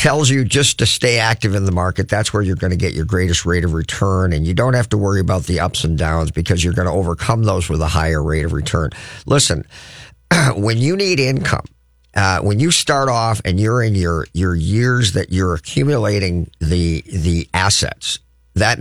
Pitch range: 85-125 Hz